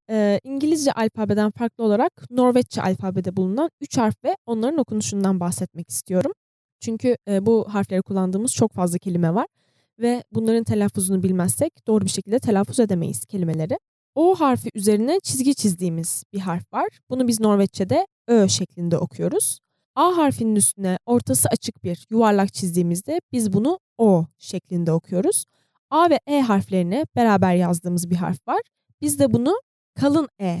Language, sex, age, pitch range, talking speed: Turkish, female, 10-29, 185-255 Hz, 145 wpm